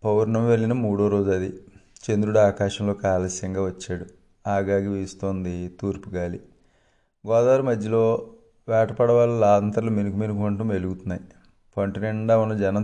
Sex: male